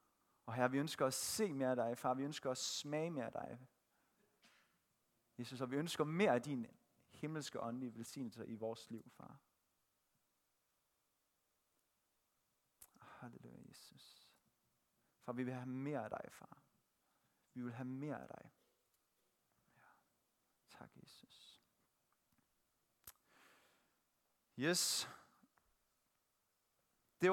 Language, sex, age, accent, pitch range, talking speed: Danish, male, 30-49, native, 120-155 Hz, 115 wpm